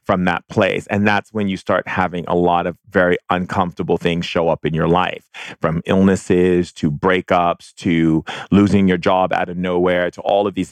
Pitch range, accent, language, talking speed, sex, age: 85-100 Hz, American, English, 190 wpm, male, 30-49